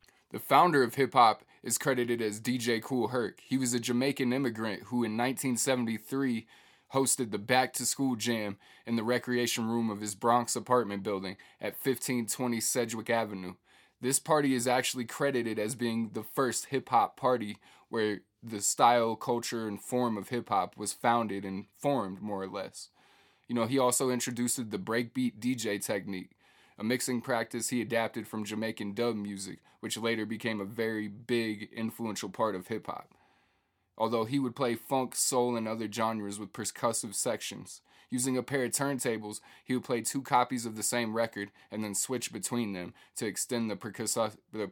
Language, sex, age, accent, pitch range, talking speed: English, male, 20-39, American, 105-125 Hz, 165 wpm